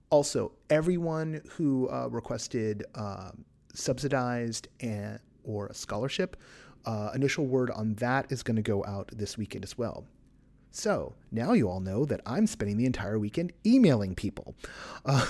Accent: American